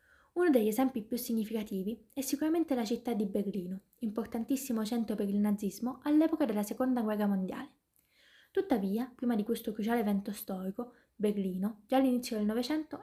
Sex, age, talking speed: female, 20-39, 150 wpm